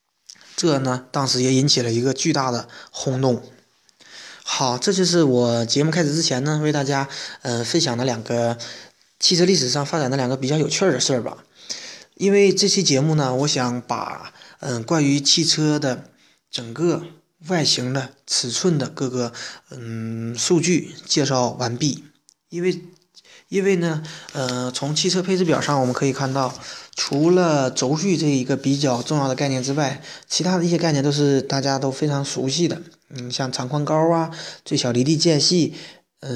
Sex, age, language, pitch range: male, 20-39, Chinese, 130-160 Hz